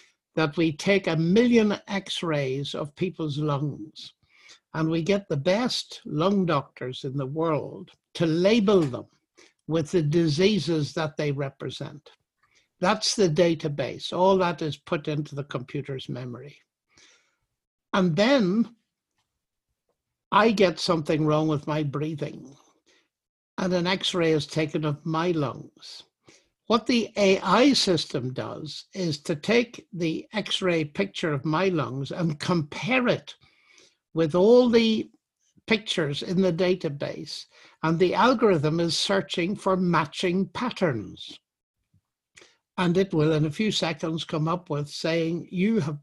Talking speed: 135 wpm